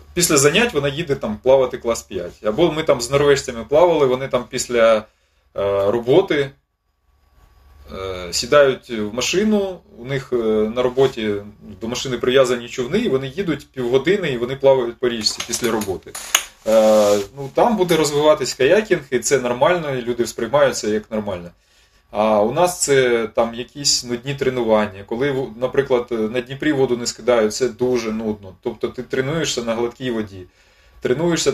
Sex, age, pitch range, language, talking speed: male, 20-39, 105-135 Hz, Ukrainian, 150 wpm